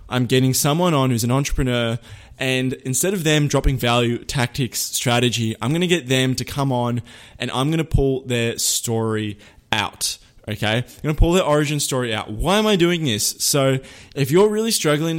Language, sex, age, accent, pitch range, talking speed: English, male, 20-39, Australian, 115-145 Hz, 200 wpm